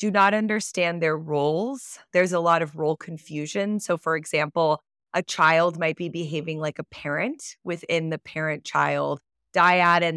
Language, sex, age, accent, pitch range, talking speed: English, female, 20-39, American, 155-190 Hz, 160 wpm